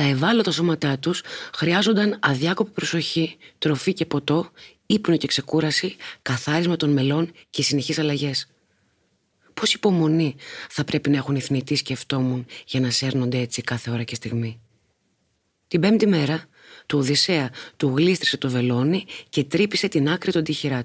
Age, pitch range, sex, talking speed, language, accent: 30-49, 135-175 Hz, female, 145 wpm, Greek, native